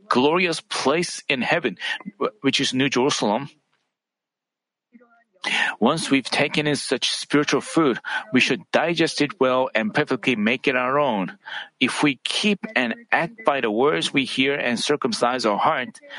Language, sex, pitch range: Korean, male, 140-205 Hz